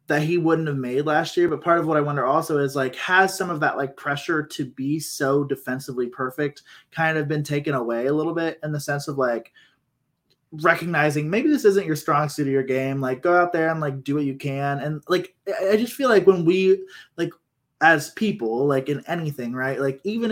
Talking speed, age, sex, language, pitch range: 225 wpm, 20-39, male, English, 130-165 Hz